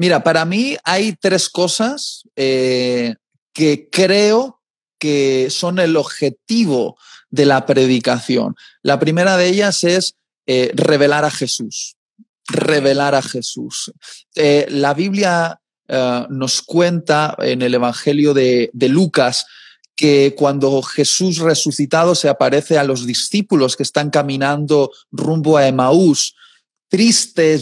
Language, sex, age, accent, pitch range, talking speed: Spanish, male, 30-49, Spanish, 140-175 Hz, 120 wpm